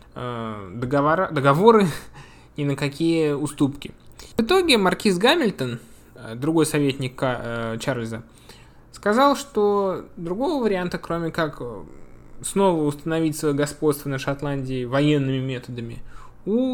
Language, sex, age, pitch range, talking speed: Russian, male, 20-39, 125-195 Hz, 100 wpm